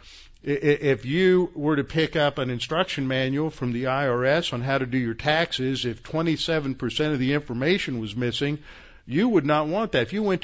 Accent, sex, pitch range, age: American, male, 125-155 Hz, 50-69